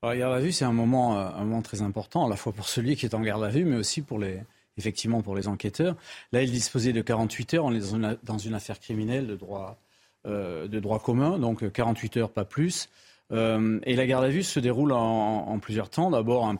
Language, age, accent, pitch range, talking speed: French, 40-59, French, 110-135 Hz, 255 wpm